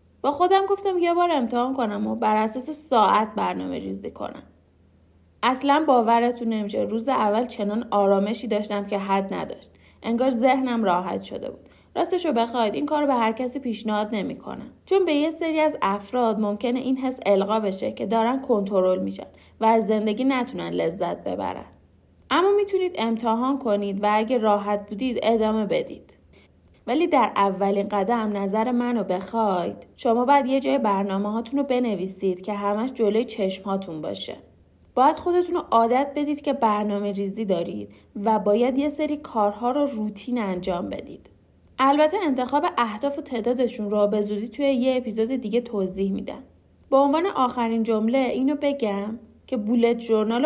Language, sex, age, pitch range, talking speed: Persian, female, 30-49, 205-260 Hz, 150 wpm